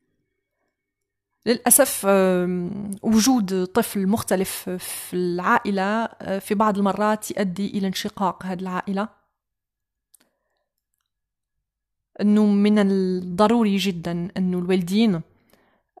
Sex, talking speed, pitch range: female, 75 wpm, 180-210 Hz